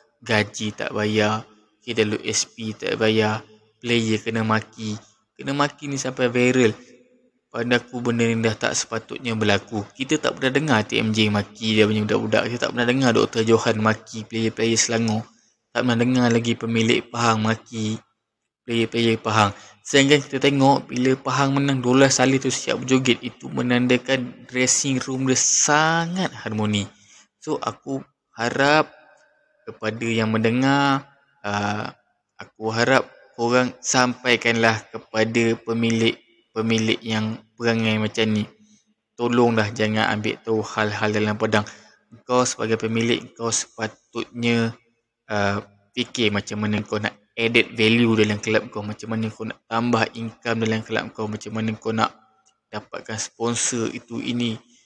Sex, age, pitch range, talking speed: male, 20-39, 110-125 Hz, 135 wpm